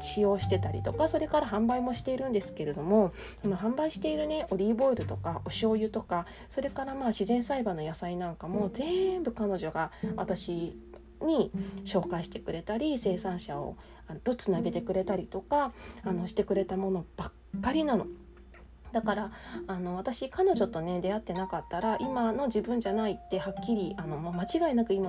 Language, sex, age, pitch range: Japanese, female, 20-39, 180-235 Hz